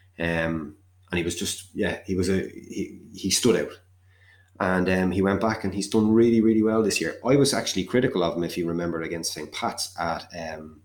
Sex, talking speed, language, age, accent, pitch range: male, 220 wpm, English, 30-49, Irish, 85-95 Hz